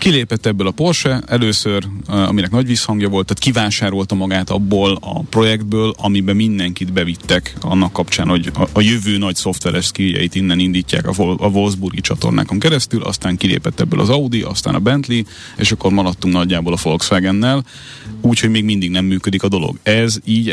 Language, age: Hungarian, 30-49